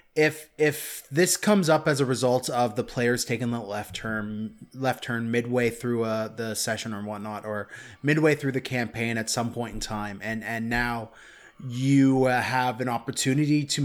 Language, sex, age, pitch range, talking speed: English, male, 20-39, 115-140 Hz, 185 wpm